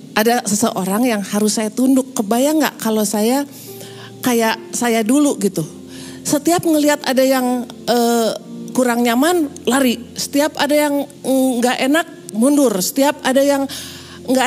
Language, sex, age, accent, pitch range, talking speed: Indonesian, female, 40-59, native, 215-275 Hz, 135 wpm